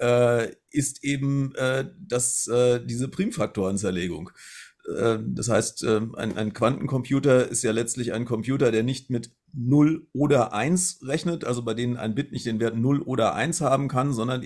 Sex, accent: male, German